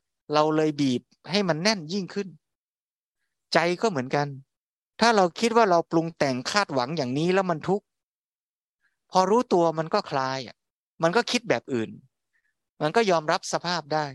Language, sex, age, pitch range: Thai, male, 20-39, 135-170 Hz